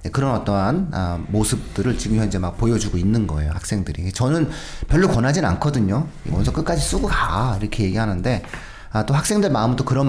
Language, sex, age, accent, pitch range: Korean, male, 40-59, native, 90-125 Hz